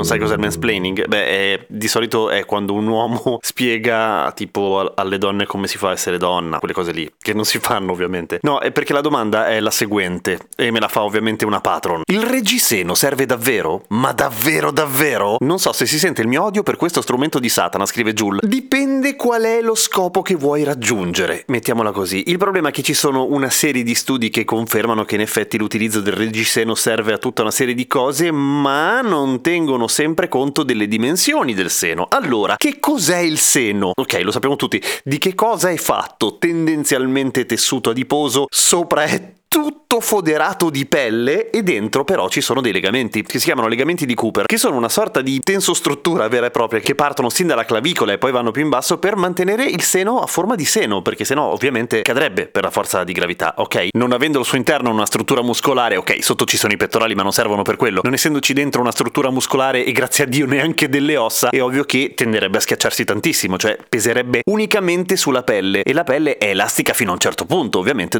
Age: 30-49